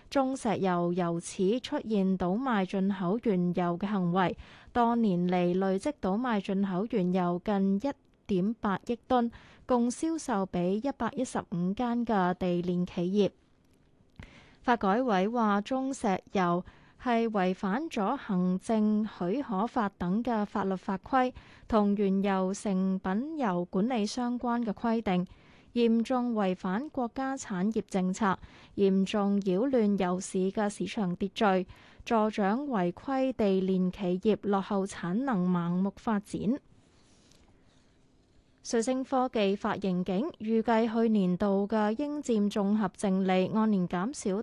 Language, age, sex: Chinese, 20-39, female